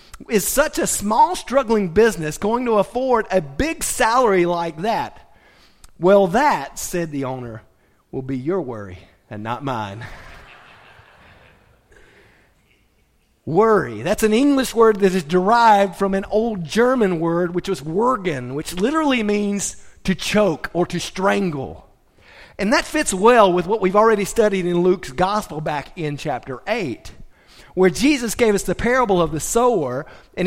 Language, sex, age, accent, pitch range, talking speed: English, male, 40-59, American, 170-230 Hz, 150 wpm